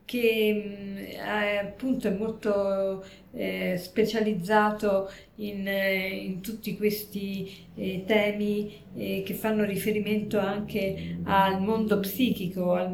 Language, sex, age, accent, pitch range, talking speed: Italian, female, 40-59, native, 195-230 Hz, 100 wpm